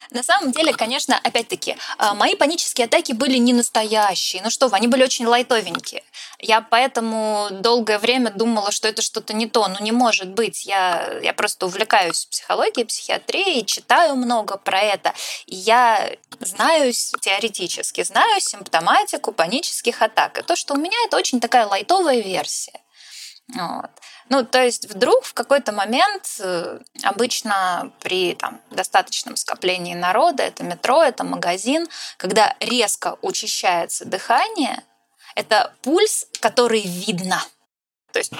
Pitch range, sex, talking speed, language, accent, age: 215-270 Hz, female, 130 wpm, Russian, native, 20-39